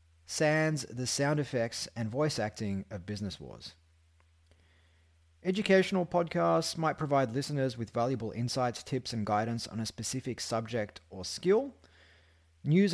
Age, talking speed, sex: 30-49, 130 wpm, male